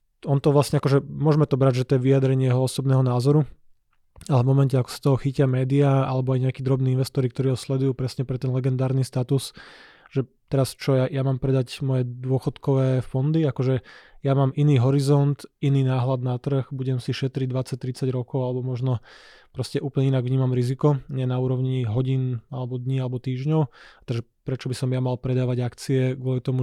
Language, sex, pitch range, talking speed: Slovak, male, 125-135 Hz, 190 wpm